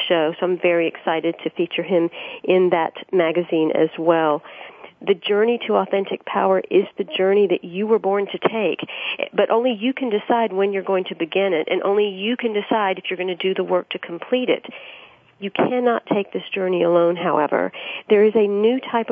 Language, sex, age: English, female, 50-69